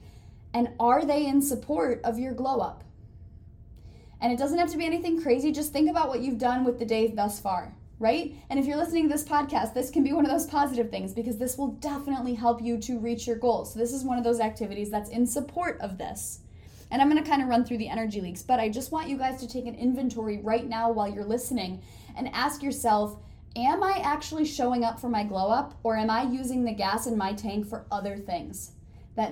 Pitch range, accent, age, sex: 215-280 Hz, American, 10-29, female